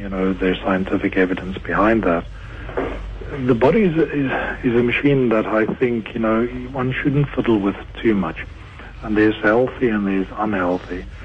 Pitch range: 95-115 Hz